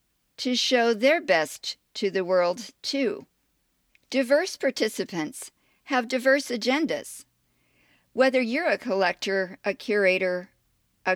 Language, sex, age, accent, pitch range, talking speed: English, female, 50-69, American, 190-260 Hz, 110 wpm